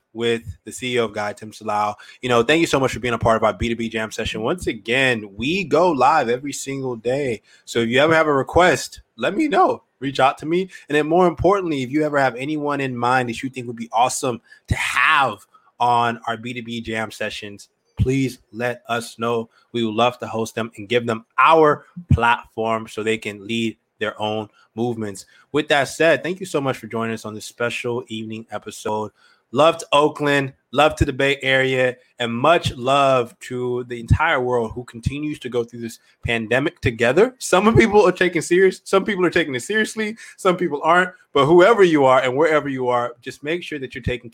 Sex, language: male, English